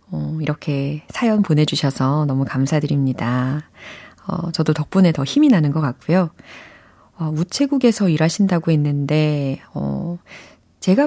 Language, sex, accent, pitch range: Korean, female, native, 145-215 Hz